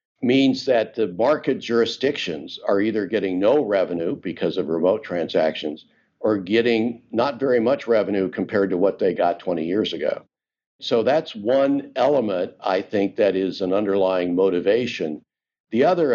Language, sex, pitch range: English, male, 95-115 Hz